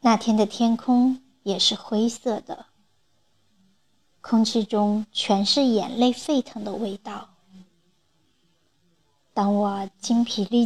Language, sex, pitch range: Chinese, male, 200-235 Hz